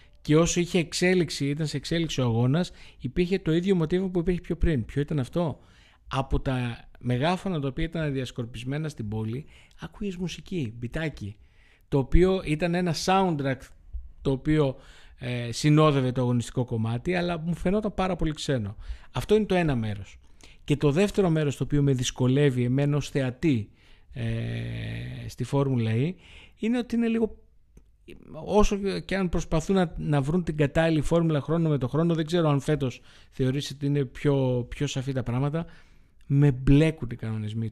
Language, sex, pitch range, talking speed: Greek, male, 125-160 Hz, 165 wpm